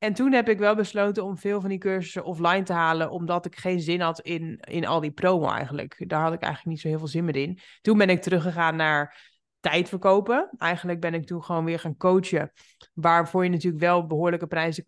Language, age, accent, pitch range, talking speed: Dutch, 20-39, Dutch, 170-205 Hz, 225 wpm